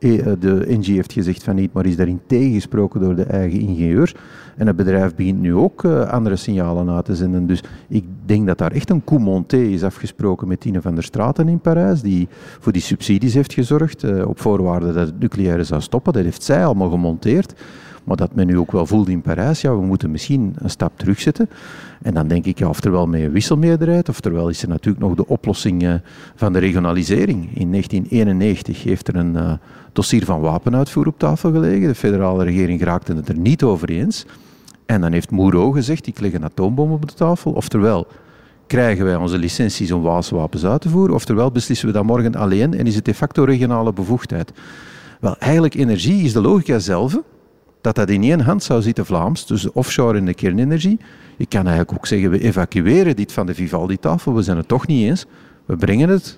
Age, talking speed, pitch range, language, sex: 40-59, 205 wpm, 90-130 Hz, Dutch, male